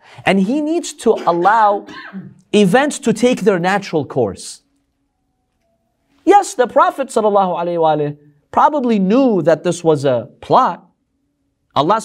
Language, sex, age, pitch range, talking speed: English, male, 50-69, 150-225 Hz, 115 wpm